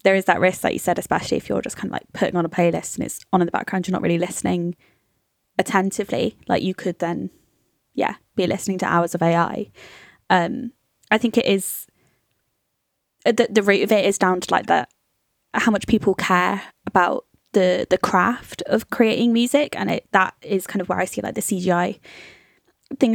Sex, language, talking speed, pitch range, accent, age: female, English, 205 wpm, 185-225 Hz, British, 20-39